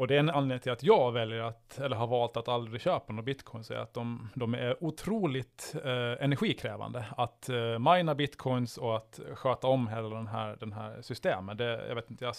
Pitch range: 115-130 Hz